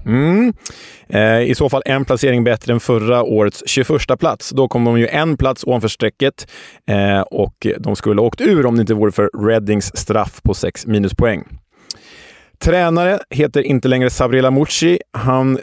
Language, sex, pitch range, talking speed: Swedish, male, 110-145 Hz, 175 wpm